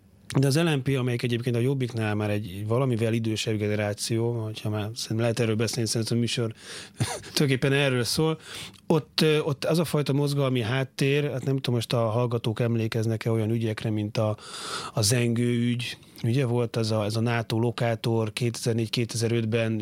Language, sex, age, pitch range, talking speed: Hungarian, male, 30-49, 115-135 Hz, 155 wpm